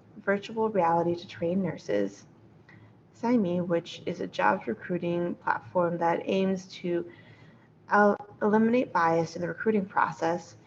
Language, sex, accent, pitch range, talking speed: English, female, American, 170-215 Hz, 120 wpm